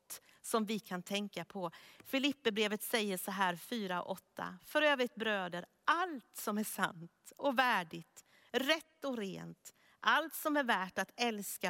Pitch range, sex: 185-260 Hz, female